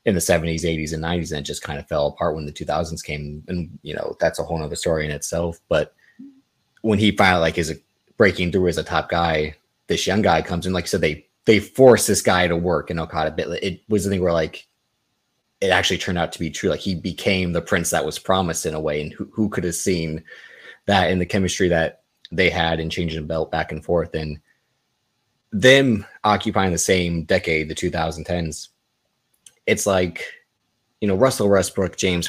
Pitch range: 80-100 Hz